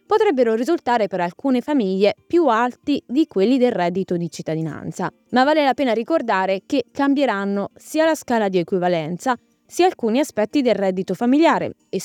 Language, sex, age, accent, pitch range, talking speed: Italian, female, 20-39, native, 185-260 Hz, 160 wpm